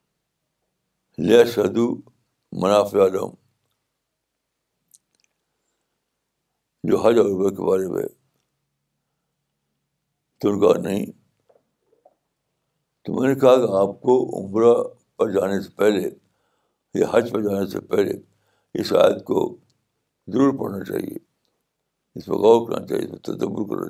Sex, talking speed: male, 110 wpm